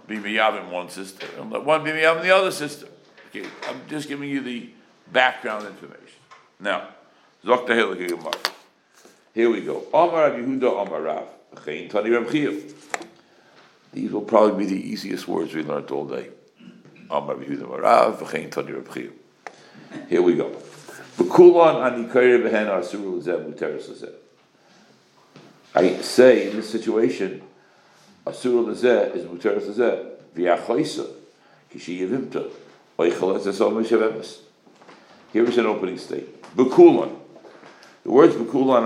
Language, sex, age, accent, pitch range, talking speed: English, male, 60-79, American, 110-140 Hz, 75 wpm